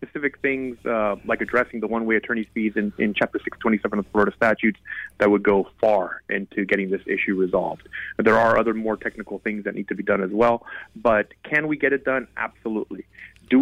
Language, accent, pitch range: English, American, 105-125 Hz